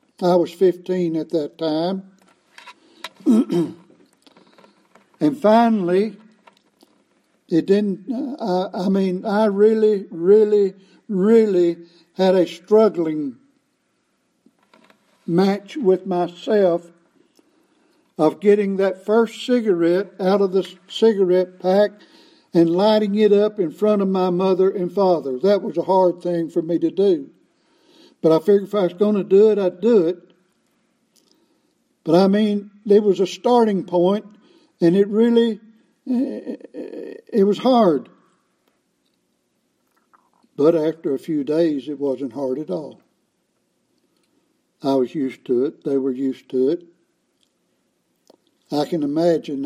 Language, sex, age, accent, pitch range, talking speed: English, male, 60-79, American, 170-220 Hz, 125 wpm